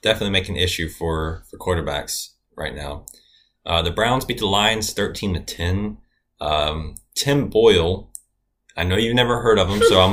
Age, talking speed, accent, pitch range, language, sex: 20-39, 180 wpm, American, 90-120 Hz, English, male